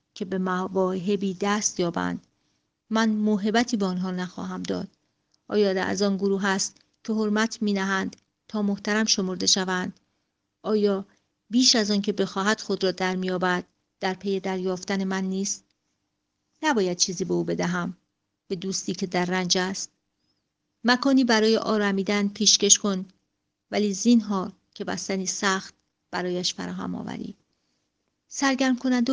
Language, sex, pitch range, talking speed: Persian, female, 185-215 Hz, 140 wpm